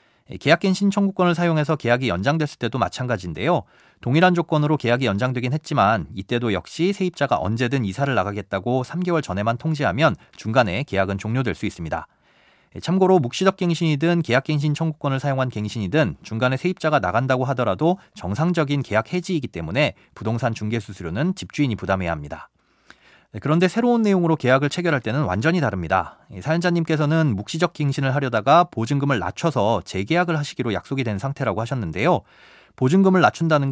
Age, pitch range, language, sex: 30-49, 110-165 Hz, Korean, male